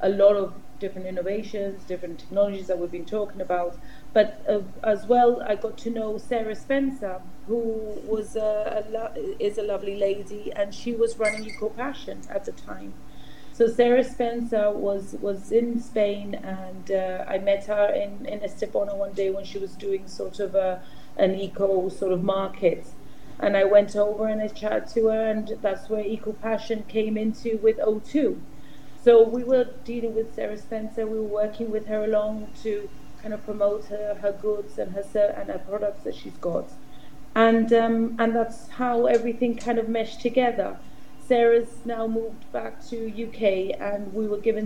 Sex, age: female, 30-49